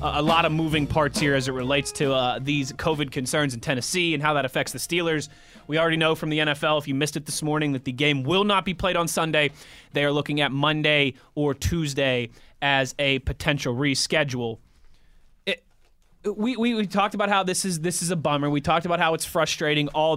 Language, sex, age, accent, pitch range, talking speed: English, male, 20-39, American, 145-190 Hz, 225 wpm